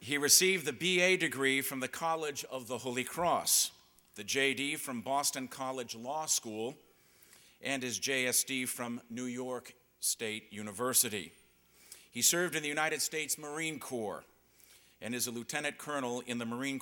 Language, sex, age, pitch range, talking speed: English, male, 50-69, 120-140 Hz, 155 wpm